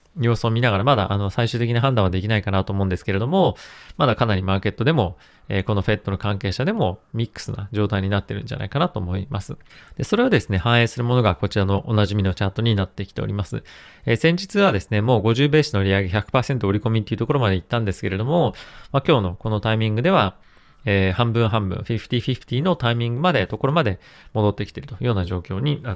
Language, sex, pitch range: Japanese, male, 100-125 Hz